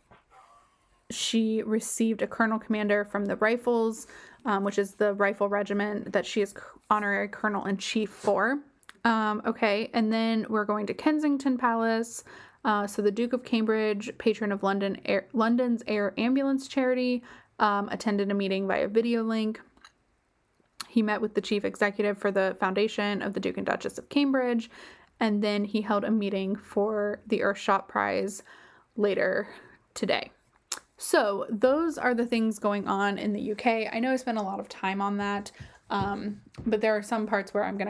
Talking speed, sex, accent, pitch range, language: 170 wpm, female, American, 205-235 Hz, English